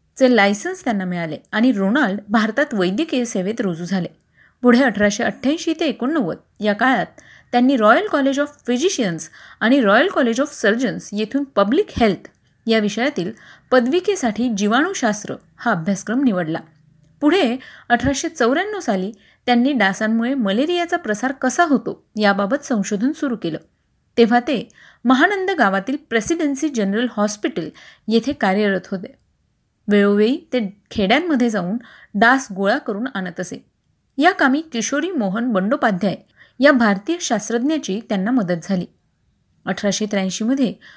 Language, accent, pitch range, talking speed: Marathi, native, 200-275 Hz, 120 wpm